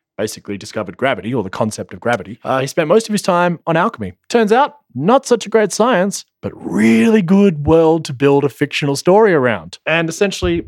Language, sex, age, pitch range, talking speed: English, male, 20-39, 105-140 Hz, 200 wpm